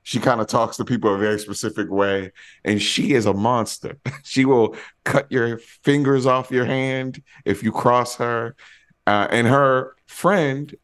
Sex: male